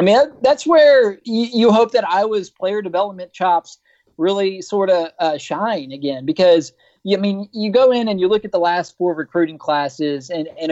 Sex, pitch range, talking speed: male, 155-190 Hz, 190 wpm